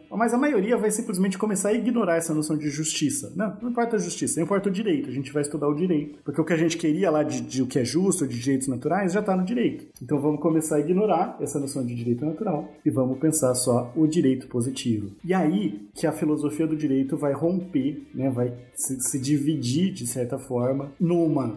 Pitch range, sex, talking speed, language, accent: 130-165 Hz, male, 230 wpm, Portuguese, Brazilian